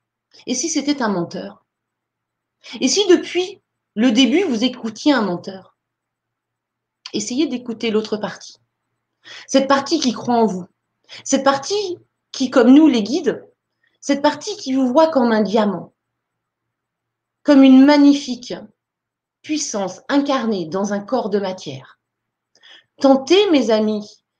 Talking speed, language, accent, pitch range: 130 wpm, French, French, 210-315 Hz